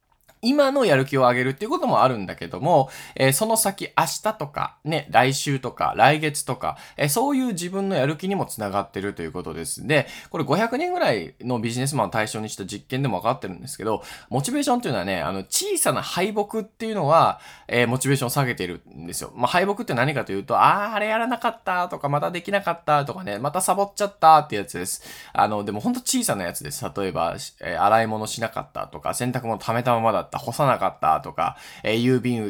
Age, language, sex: 20-39, Japanese, male